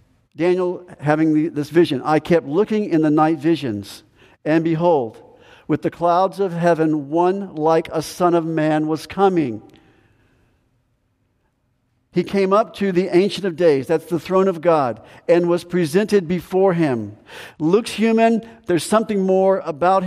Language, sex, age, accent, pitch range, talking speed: English, male, 50-69, American, 150-180 Hz, 150 wpm